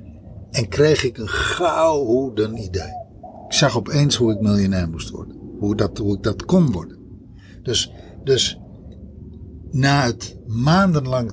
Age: 60-79